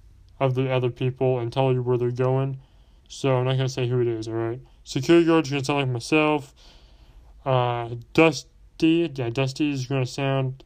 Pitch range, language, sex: 95-145 Hz, English, male